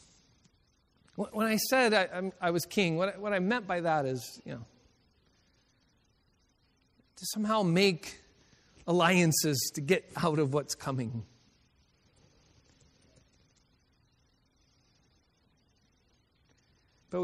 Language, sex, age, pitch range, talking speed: English, male, 40-59, 150-225 Hz, 95 wpm